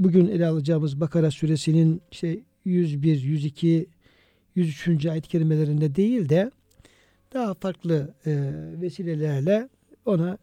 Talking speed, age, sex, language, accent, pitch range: 90 wpm, 60-79, male, Turkish, native, 150-190 Hz